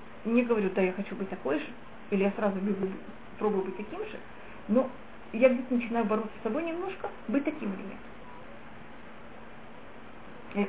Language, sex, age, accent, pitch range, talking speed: Russian, female, 30-49, native, 205-265 Hz, 165 wpm